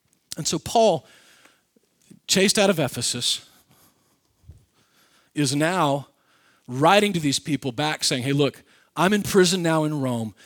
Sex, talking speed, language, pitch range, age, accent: male, 130 wpm, English, 125-170 Hz, 40-59, American